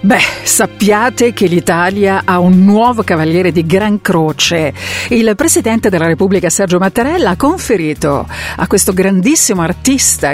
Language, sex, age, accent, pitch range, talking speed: Italian, female, 50-69, native, 165-215 Hz, 135 wpm